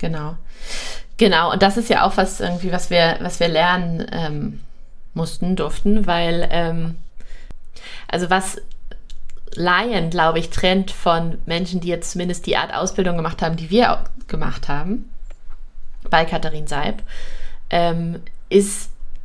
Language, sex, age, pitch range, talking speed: German, female, 30-49, 170-205 Hz, 135 wpm